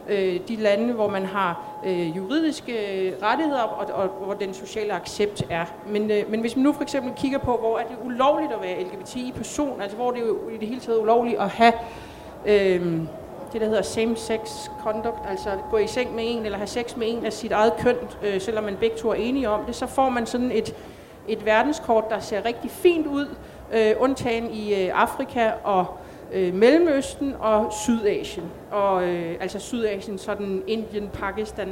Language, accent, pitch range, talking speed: Danish, native, 195-235 Hz, 195 wpm